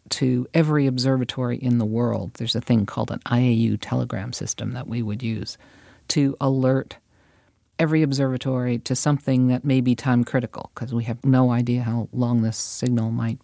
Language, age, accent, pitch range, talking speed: English, 50-69, American, 115-140 Hz, 170 wpm